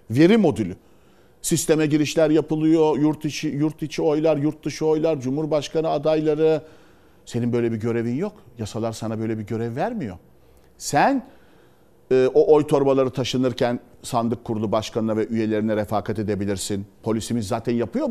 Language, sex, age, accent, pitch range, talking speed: Turkish, male, 50-69, native, 110-160 Hz, 140 wpm